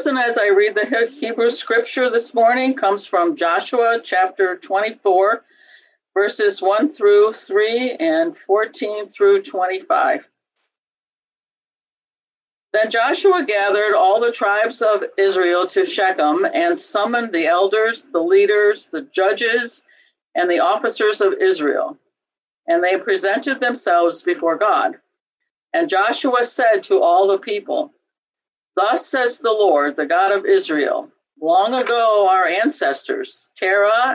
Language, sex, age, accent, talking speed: English, female, 50-69, American, 125 wpm